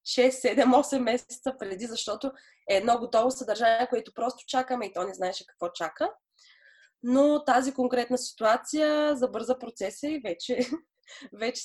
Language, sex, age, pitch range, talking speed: Bulgarian, female, 20-39, 205-260 Hz, 140 wpm